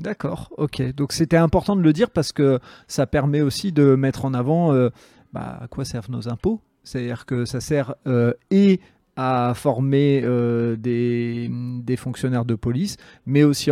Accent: French